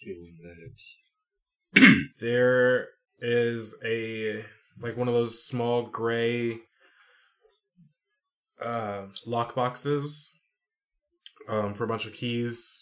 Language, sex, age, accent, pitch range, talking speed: English, male, 20-39, American, 100-125 Hz, 85 wpm